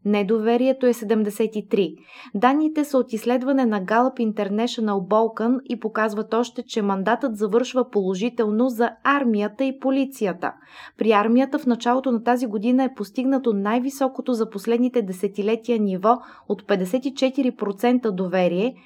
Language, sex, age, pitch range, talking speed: Bulgarian, female, 20-39, 205-250 Hz, 125 wpm